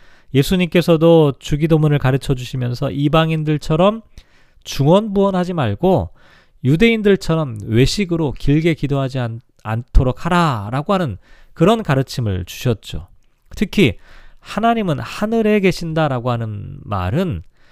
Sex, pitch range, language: male, 125-180 Hz, Korean